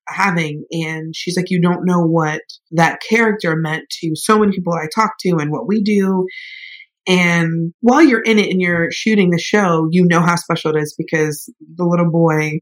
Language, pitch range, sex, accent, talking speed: English, 160-195 Hz, female, American, 200 wpm